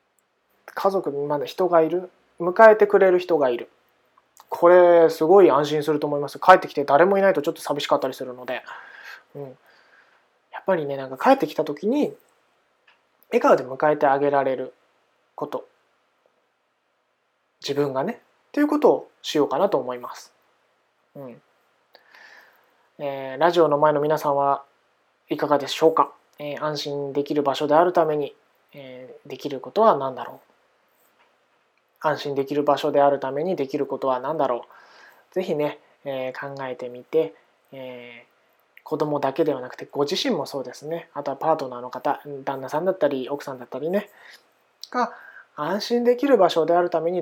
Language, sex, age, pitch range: Japanese, male, 20-39, 140-180 Hz